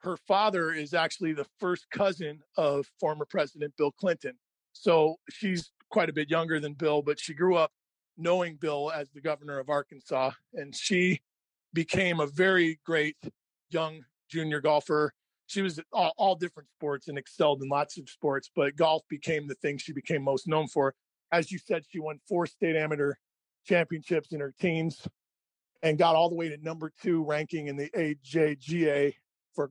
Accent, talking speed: American, 175 wpm